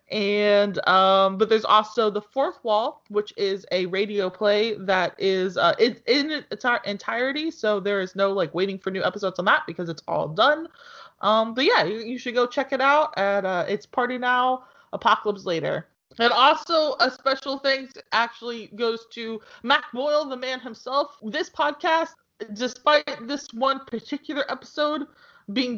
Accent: American